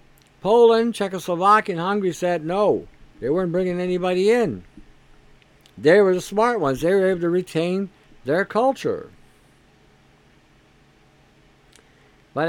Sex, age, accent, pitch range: male, 60-79, American, 140-190 Hz